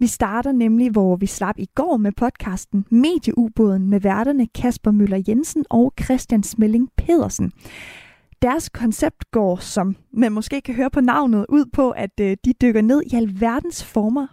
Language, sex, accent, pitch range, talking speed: Danish, female, native, 215-275 Hz, 165 wpm